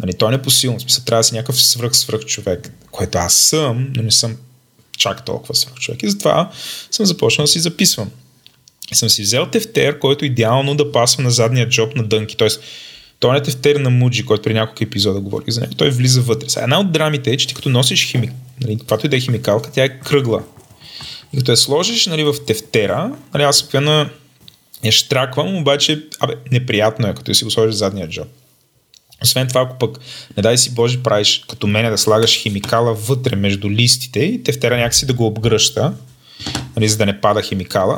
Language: Bulgarian